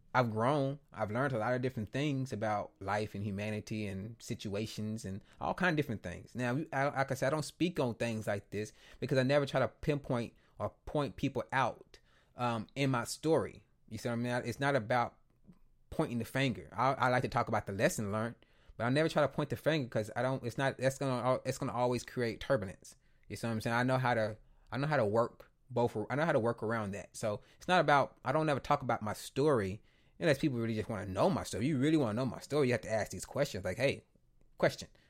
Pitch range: 110-145 Hz